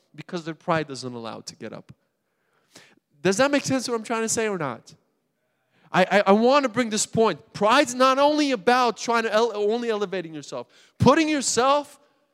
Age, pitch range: 20-39, 150-210 Hz